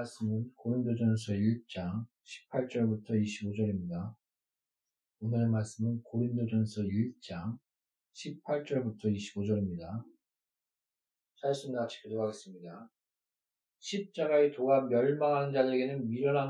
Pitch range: 125-165 Hz